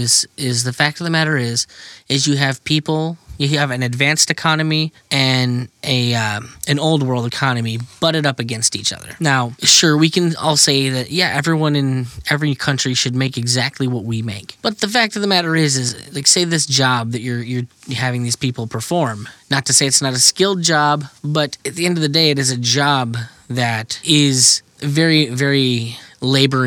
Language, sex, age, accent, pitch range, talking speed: English, male, 10-29, American, 120-150 Hz, 200 wpm